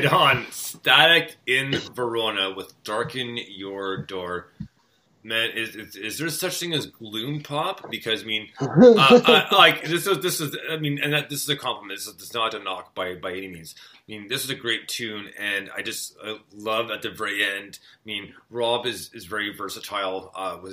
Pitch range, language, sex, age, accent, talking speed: 95-125 Hz, English, male, 30-49, American, 195 wpm